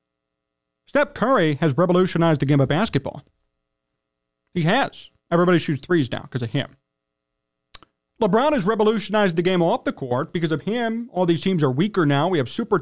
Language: English